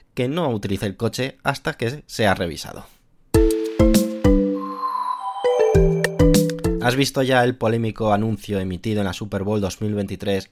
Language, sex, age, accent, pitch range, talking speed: Spanish, male, 20-39, Spanish, 100-130 Hz, 120 wpm